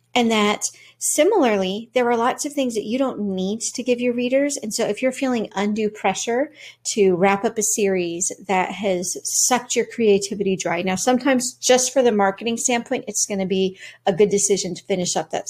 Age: 40-59